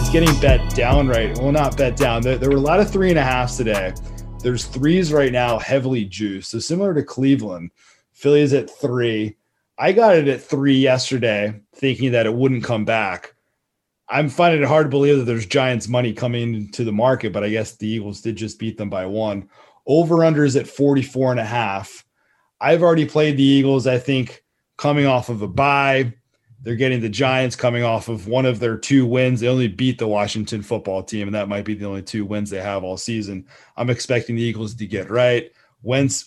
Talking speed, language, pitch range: 215 wpm, English, 110-135 Hz